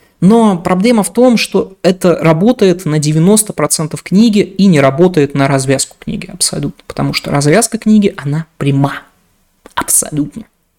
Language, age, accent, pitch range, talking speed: Russian, 20-39, native, 140-185 Hz, 135 wpm